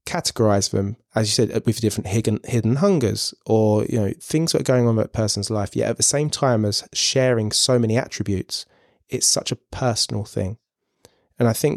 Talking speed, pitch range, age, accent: 205 wpm, 105-130 Hz, 20-39, British